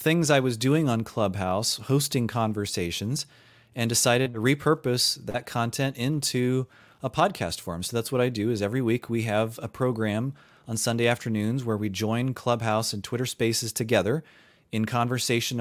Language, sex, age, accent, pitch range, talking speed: English, male, 30-49, American, 110-135 Hz, 165 wpm